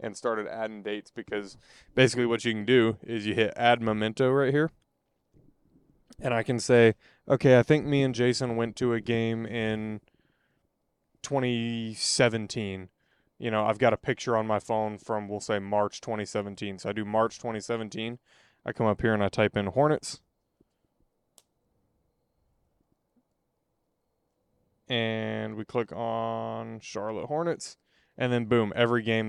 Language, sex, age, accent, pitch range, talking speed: English, male, 20-39, American, 105-120 Hz, 150 wpm